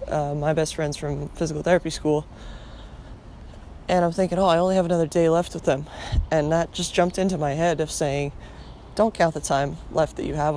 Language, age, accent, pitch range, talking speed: English, 20-39, American, 145-175 Hz, 210 wpm